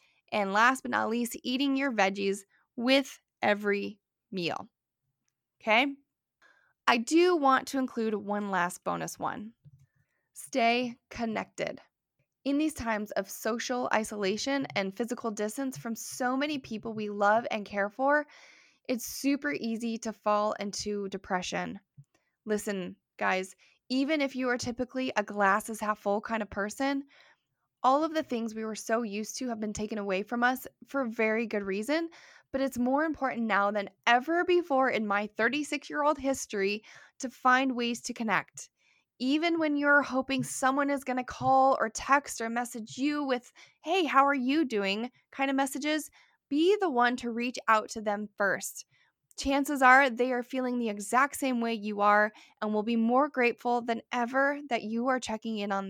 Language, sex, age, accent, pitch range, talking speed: English, female, 10-29, American, 210-270 Hz, 165 wpm